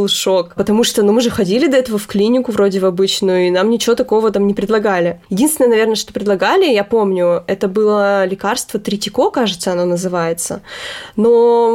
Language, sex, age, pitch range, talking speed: Russian, female, 20-39, 200-245 Hz, 180 wpm